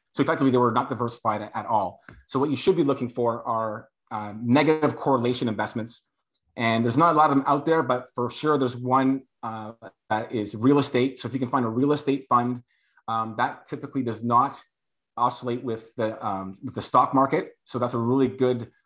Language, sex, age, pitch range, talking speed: English, male, 30-49, 120-140 Hz, 205 wpm